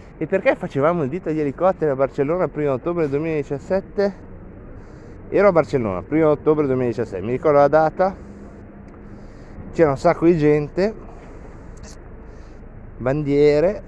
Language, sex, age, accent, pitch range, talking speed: Italian, male, 30-49, native, 125-180 Hz, 130 wpm